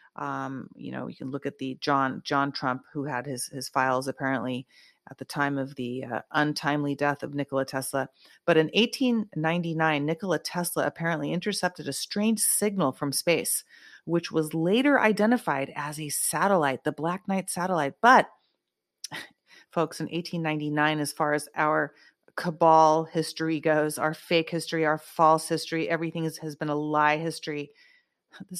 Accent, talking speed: American, 160 wpm